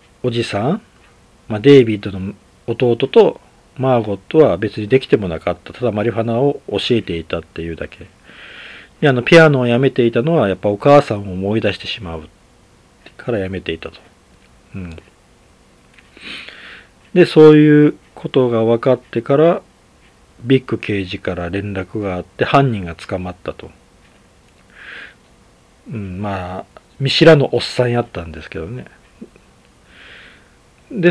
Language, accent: Japanese, native